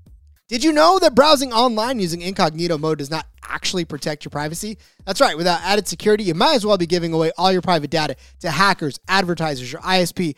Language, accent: English, American